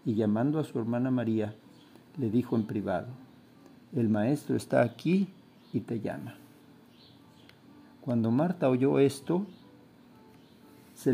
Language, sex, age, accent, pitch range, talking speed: Spanish, male, 50-69, Mexican, 115-145 Hz, 120 wpm